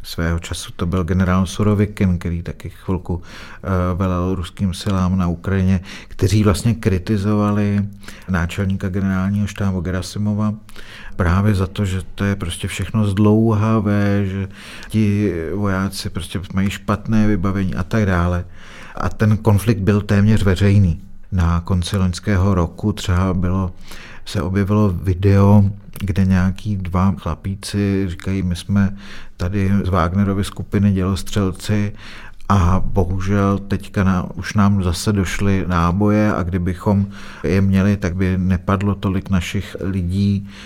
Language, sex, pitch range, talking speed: Czech, male, 95-105 Hz, 125 wpm